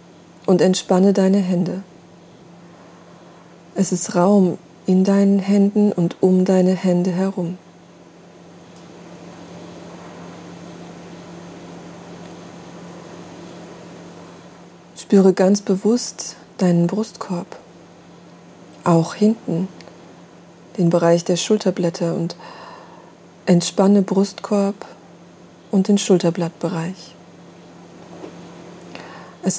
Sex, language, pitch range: female, German, 175-200 Hz